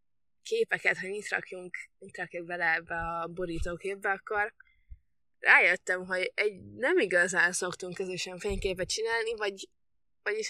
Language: Hungarian